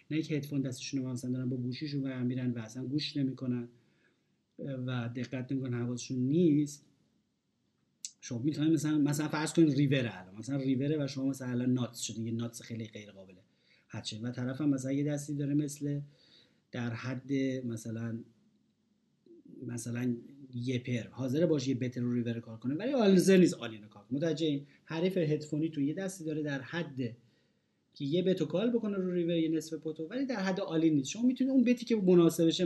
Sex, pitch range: male, 125-175 Hz